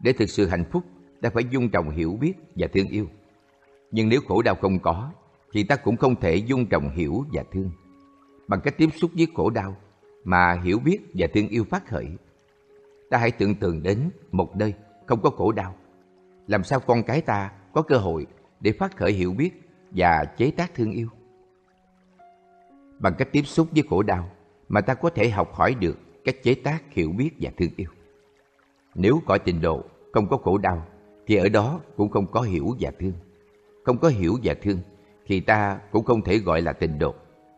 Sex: male